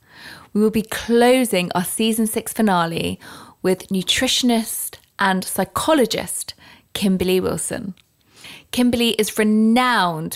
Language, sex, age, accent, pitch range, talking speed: English, female, 20-39, British, 185-225 Hz, 100 wpm